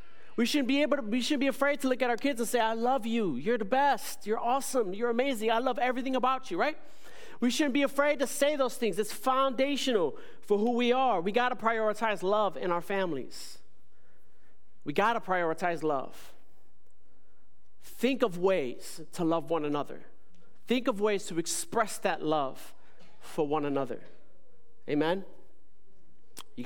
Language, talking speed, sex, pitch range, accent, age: English, 175 wpm, male, 190-260 Hz, American, 40-59